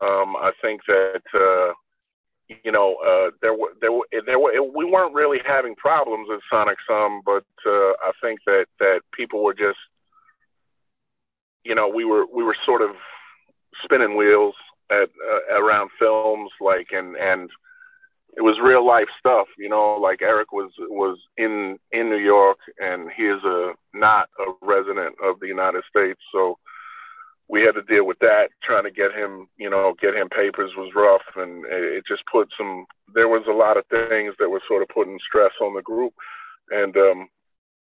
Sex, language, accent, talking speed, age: male, English, American, 180 wpm, 30-49